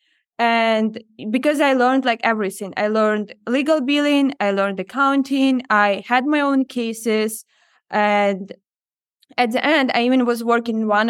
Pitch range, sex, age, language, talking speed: 215-260 Hz, female, 20-39, English, 150 wpm